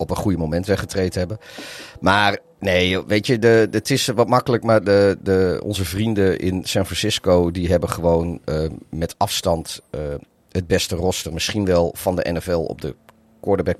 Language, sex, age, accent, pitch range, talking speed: Dutch, male, 40-59, Dutch, 85-105 Hz, 185 wpm